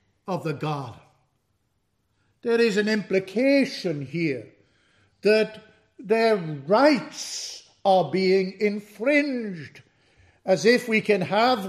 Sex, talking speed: male, 100 wpm